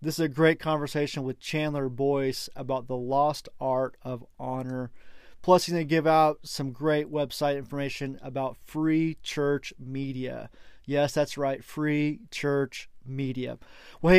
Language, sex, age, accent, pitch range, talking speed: English, male, 30-49, American, 130-155 Hz, 145 wpm